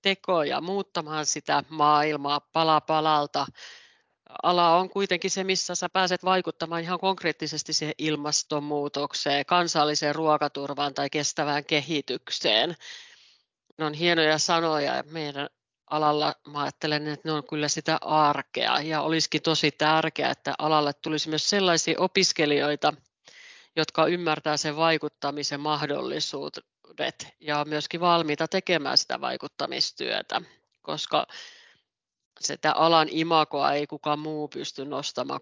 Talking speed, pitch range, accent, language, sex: 115 wpm, 145-165 Hz, native, Finnish, female